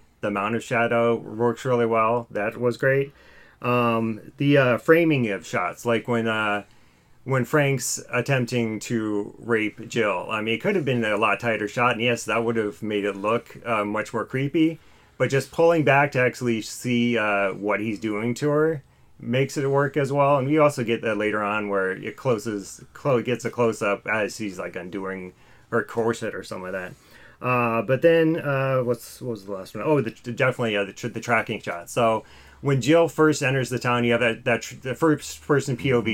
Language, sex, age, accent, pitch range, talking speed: English, male, 30-49, American, 110-130 Hz, 210 wpm